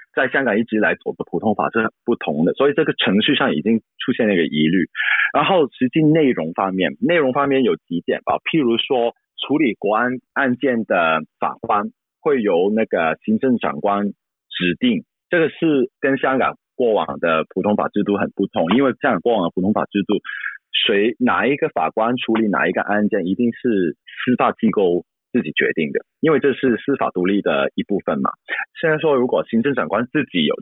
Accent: native